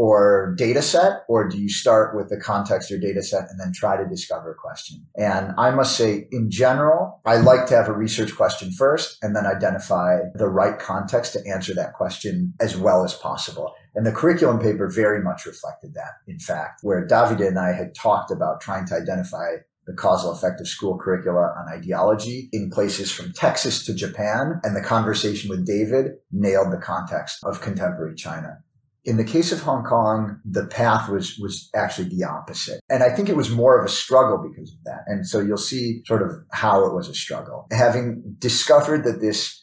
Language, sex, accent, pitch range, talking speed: English, male, American, 100-120 Hz, 200 wpm